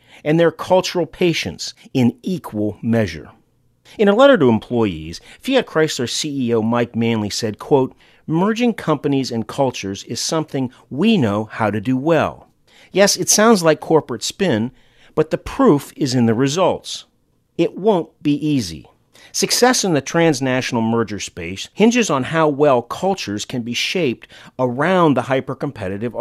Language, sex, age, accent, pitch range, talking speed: English, male, 40-59, American, 105-150 Hz, 145 wpm